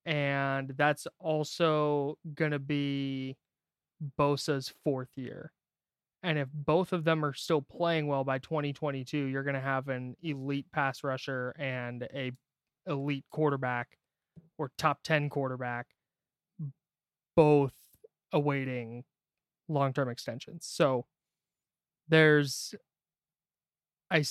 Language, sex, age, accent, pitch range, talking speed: English, male, 20-39, American, 135-155 Hz, 105 wpm